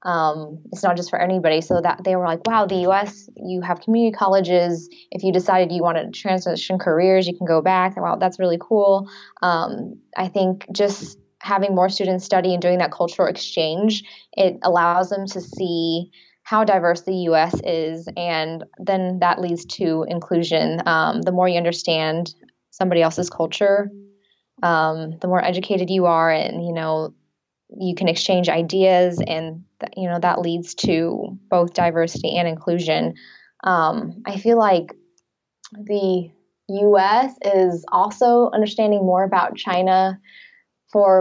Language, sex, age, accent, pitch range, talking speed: English, female, 10-29, American, 170-195 Hz, 160 wpm